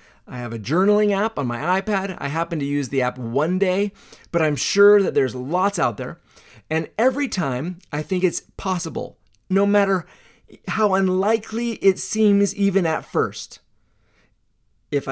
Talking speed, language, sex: 165 wpm, English, male